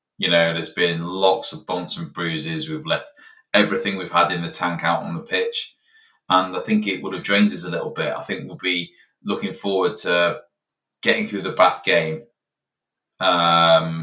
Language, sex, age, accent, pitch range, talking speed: English, male, 20-39, British, 85-120 Hz, 195 wpm